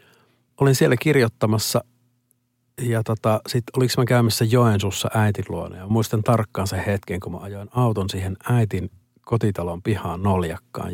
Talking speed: 145 wpm